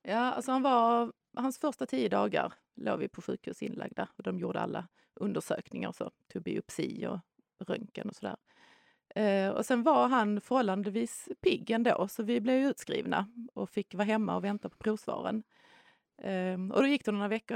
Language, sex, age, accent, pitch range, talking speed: Swedish, female, 30-49, native, 190-235 Hz, 165 wpm